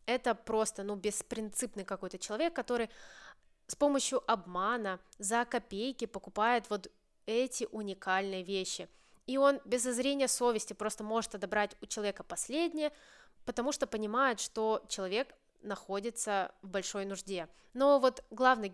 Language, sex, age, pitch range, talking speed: Russian, female, 20-39, 200-255 Hz, 130 wpm